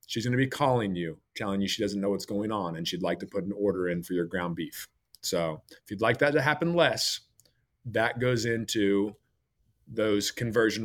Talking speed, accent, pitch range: 215 wpm, American, 95-125 Hz